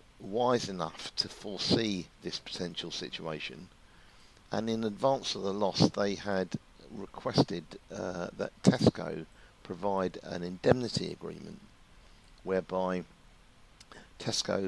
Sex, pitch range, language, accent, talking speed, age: male, 80-100 Hz, English, British, 100 wpm, 50-69